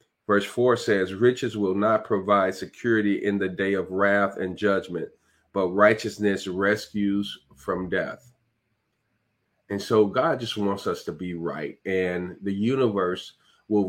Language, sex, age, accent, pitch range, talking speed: English, male, 40-59, American, 95-110 Hz, 145 wpm